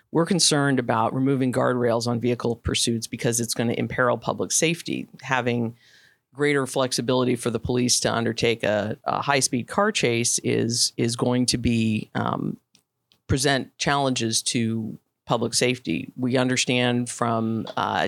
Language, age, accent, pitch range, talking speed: English, 50-69, American, 115-135 Hz, 145 wpm